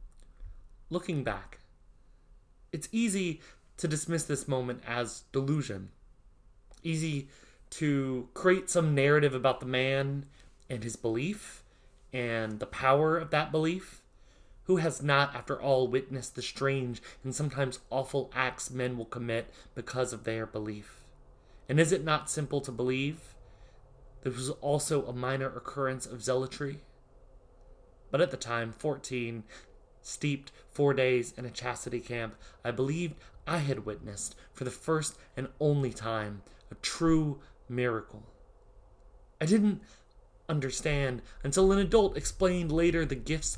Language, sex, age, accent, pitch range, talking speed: English, male, 30-49, American, 120-155 Hz, 135 wpm